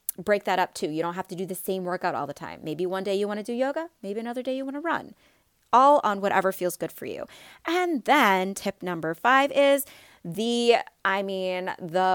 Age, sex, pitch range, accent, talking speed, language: 20-39, female, 170-230 Hz, American, 230 wpm, English